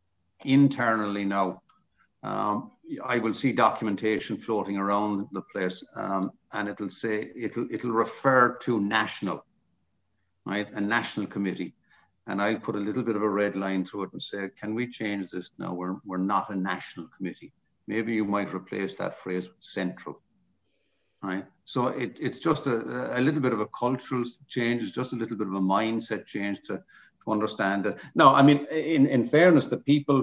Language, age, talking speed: English, 60-79, 180 wpm